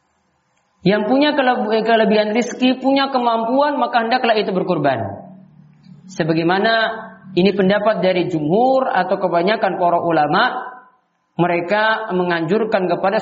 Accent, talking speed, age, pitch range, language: native, 105 wpm, 40-59, 185-260 Hz, Indonesian